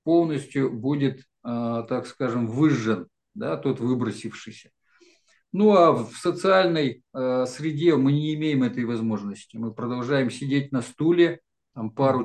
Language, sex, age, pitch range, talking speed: Russian, male, 50-69, 120-145 Hz, 120 wpm